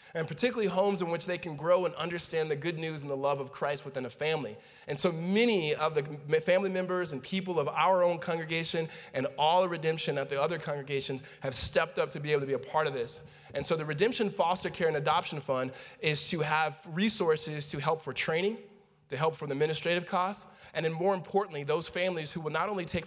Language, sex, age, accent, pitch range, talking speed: English, male, 20-39, American, 140-175 Hz, 230 wpm